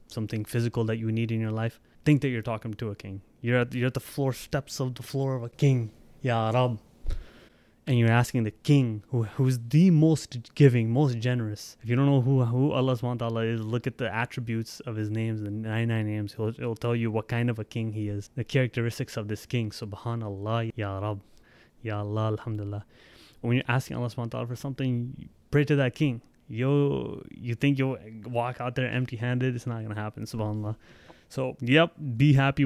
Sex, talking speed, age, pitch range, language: male, 205 wpm, 20-39, 105-125 Hz, English